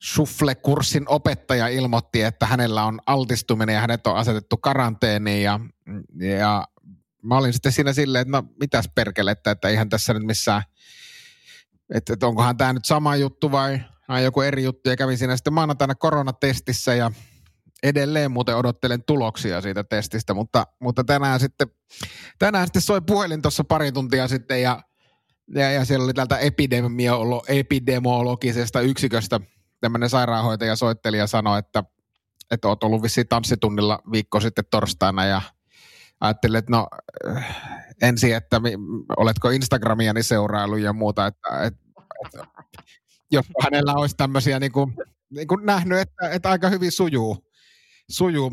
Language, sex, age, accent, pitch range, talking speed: Finnish, male, 30-49, native, 115-140 Hz, 140 wpm